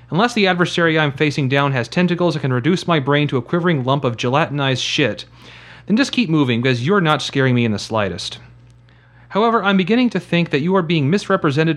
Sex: male